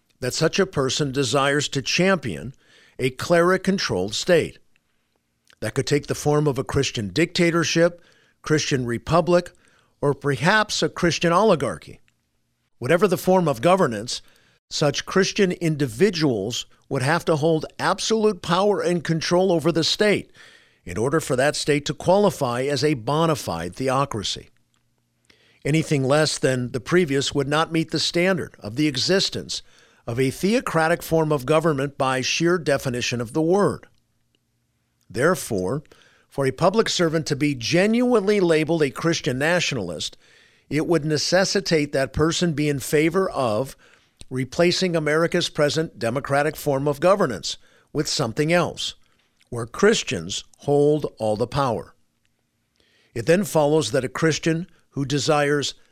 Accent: American